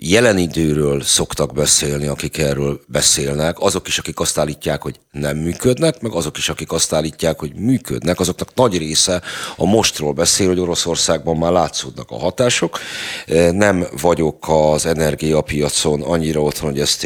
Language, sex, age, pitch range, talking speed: Hungarian, male, 30-49, 75-85 Hz, 150 wpm